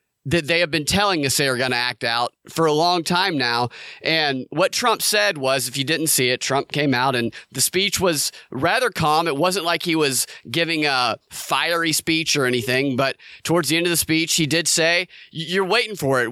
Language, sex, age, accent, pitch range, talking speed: English, male, 30-49, American, 135-170 Hz, 220 wpm